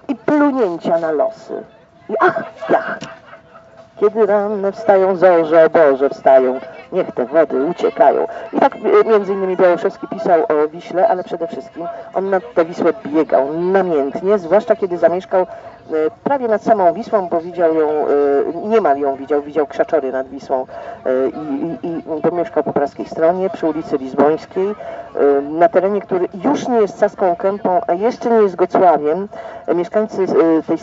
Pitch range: 150-215 Hz